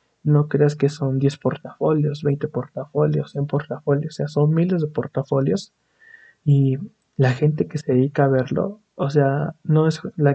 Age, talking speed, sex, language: 20-39, 170 wpm, male, Spanish